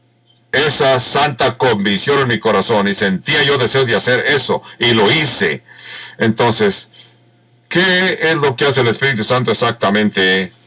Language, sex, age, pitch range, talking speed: English, male, 60-79, 115-155 Hz, 145 wpm